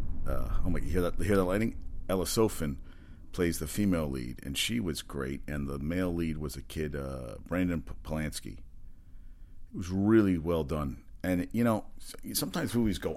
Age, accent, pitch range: 40-59, American, 75-95 Hz